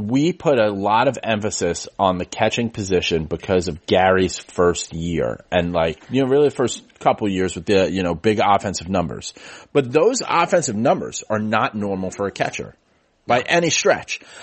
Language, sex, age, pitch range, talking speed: English, male, 30-49, 100-130 Hz, 185 wpm